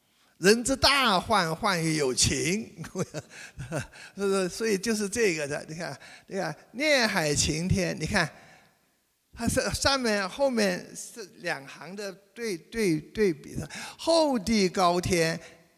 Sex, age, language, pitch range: male, 50-69, Chinese, 155-215 Hz